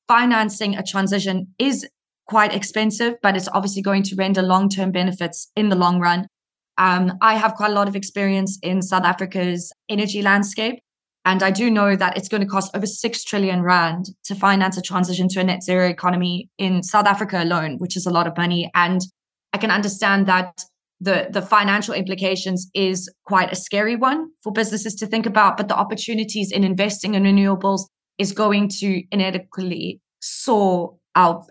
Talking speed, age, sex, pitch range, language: 180 wpm, 20-39, female, 180-210 Hz, English